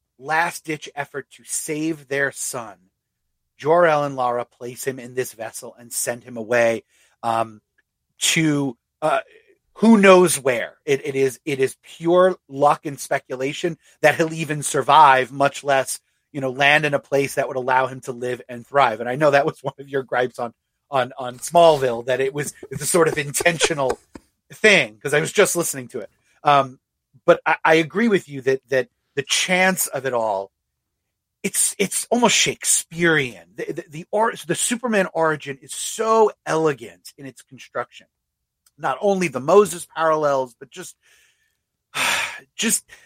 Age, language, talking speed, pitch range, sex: 30-49, English, 170 wpm, 125-170 Hz, male